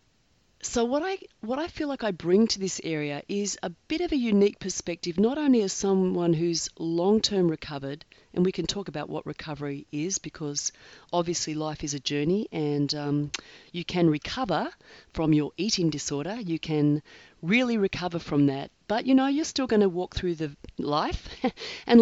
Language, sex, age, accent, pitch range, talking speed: English, female, 40-59, Australian, 150-195 Hz, 185 wpm